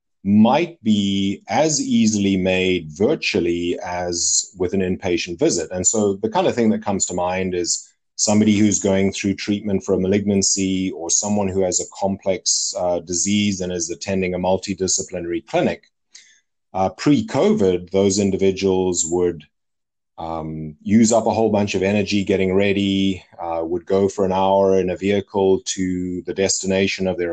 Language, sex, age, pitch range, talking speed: English, male, 30-49, 90-105 Hz, 160 wpm